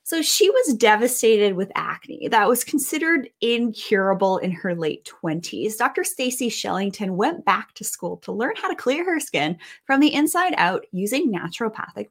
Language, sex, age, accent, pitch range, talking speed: English, female, 20-39, American, 190-270 Hz, 170 wpm